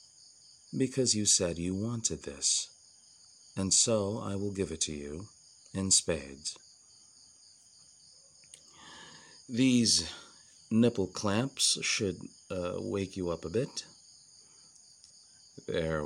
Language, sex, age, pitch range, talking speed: English, male, 40-59, 85-110 Hz, 100 wpm